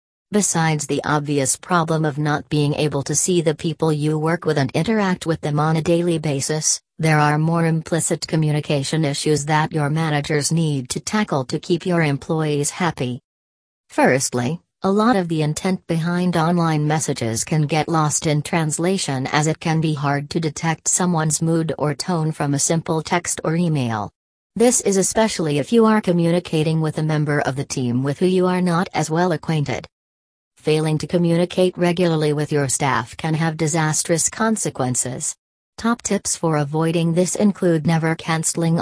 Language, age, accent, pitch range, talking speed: English, 40-59, American, 145-170 Hz, 170 wpm